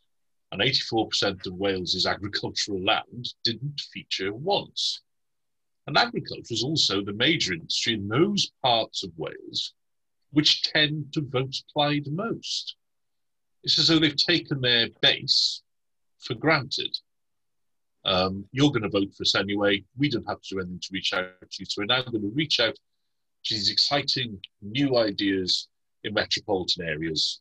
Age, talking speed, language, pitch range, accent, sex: 40-59, 155 wpm, English, 95-145 Hz, British, male